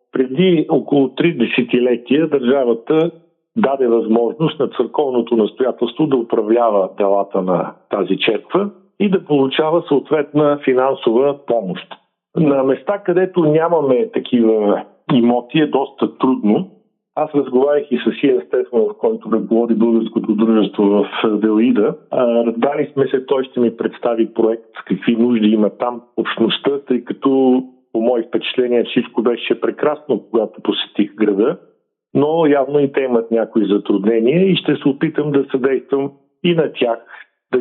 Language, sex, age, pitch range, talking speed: Bulgarian, male, 50-69, 115-160 Hz, 135 wpm